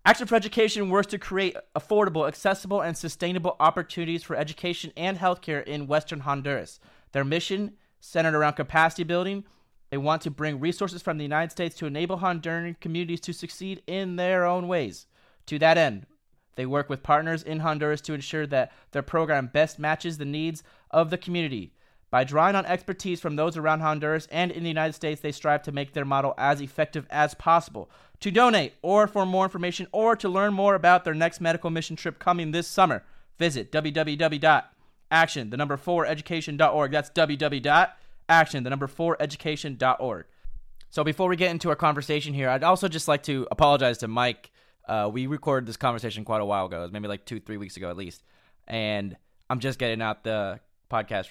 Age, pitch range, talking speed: 30-49, 140-175 Hz, 180 wpm